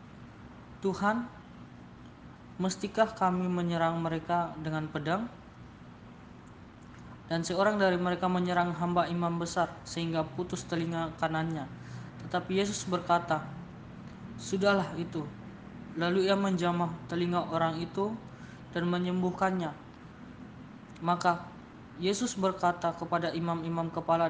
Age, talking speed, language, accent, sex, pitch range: 20-39, 95 wpm, Indonesian, native, female, 160-180 Hz